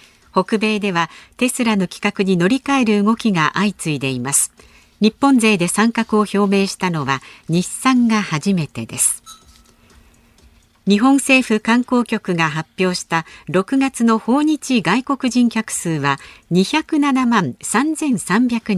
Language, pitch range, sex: Japanese, 165-245 Hz, female